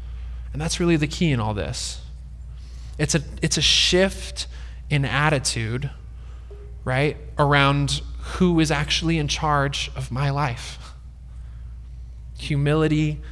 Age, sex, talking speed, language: 20-39, male, 115 wpm, English